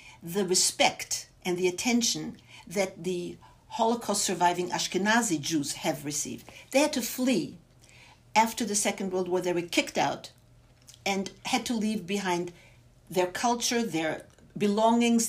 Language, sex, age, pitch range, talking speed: English, female, 60-79, 170-220 Hz, 135 wpm